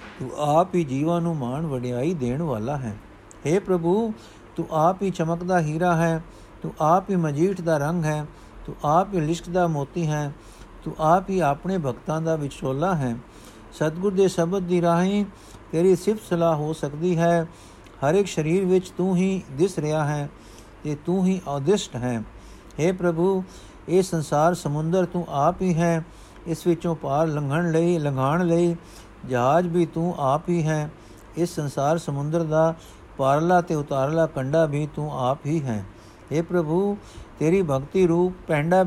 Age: 60-79